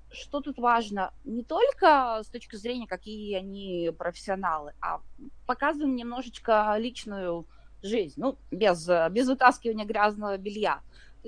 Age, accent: 20-39, native